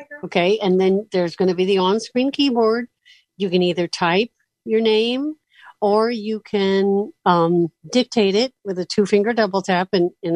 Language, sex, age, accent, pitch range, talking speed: English, female, 50-69, American, 175-220 Hz, 170 wpm